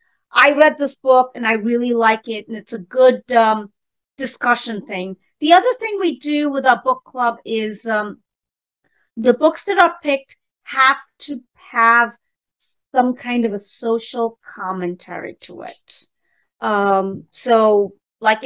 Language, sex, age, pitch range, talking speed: English, female, 40-59, 205-255 Hz, 150 wpm